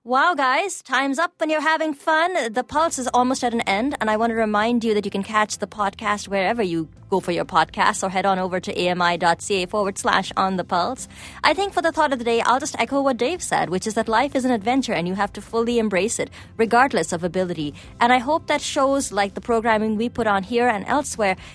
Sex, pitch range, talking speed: female, 185-260 Hz, 250 wpm